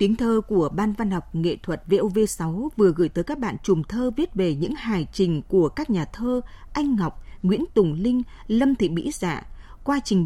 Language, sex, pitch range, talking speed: Vietnamese, female, 170-250 Hz, 215 wpm